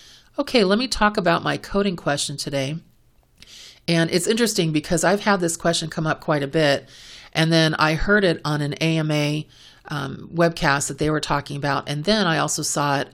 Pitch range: 145-170 Hz